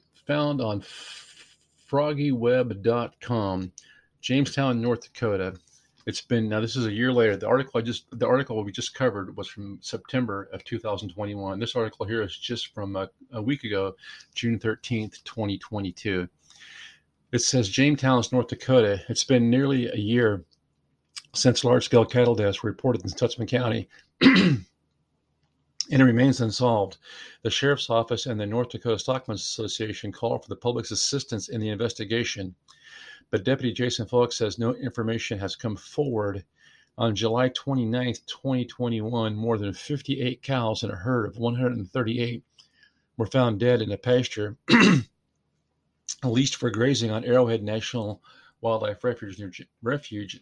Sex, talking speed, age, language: male, 140 wpm, 40-59, English